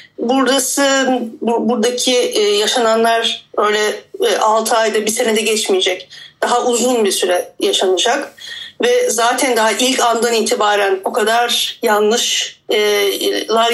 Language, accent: Turkish, native